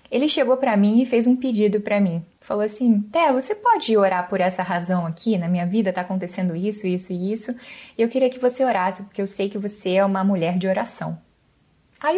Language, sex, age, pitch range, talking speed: Portuguese, female, 20-39, 180-240 Hz, 225 wpm